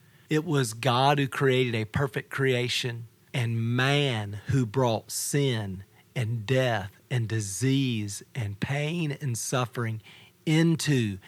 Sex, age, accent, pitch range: male, 40-59, American, 115-145 Hz